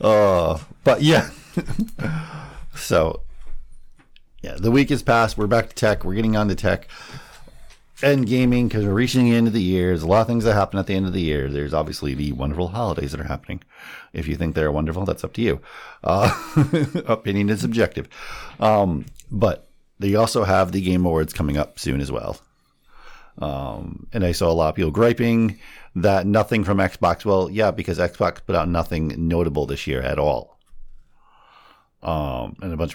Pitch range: 80-110 Hz